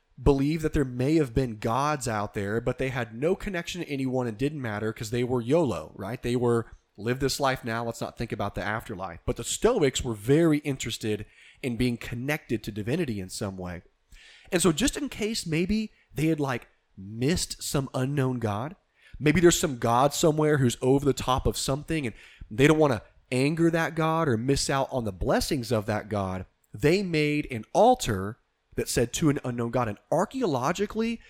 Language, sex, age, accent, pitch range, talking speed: English, male, 30-49, American, 110-150 Hz, 195 wpm